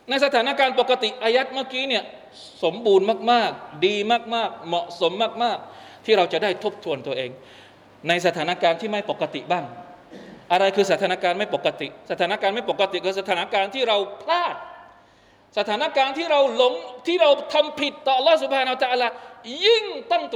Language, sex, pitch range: Thai, male, 170-260 Hz